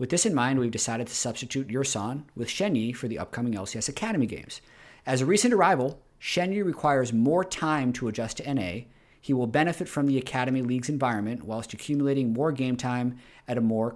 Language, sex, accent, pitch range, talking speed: English, male, American, 115-145 Hz, 195 wpm